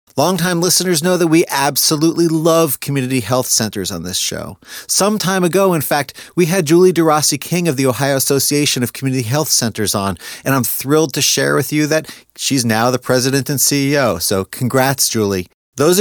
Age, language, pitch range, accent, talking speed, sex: 30-49, English, 120-160 Hz, American, 185 wpm, male